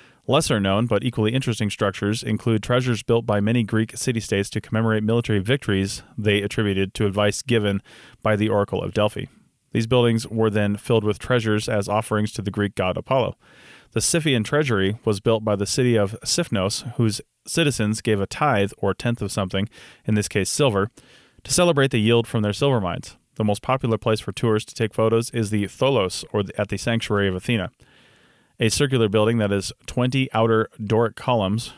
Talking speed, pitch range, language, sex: 185 wpm, 100-120 Hz, English, male